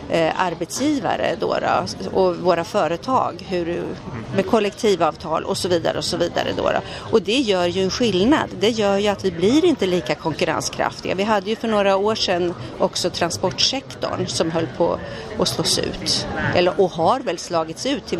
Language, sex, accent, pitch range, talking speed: Swedish, female, native, 165-220 Hz, 160 wpm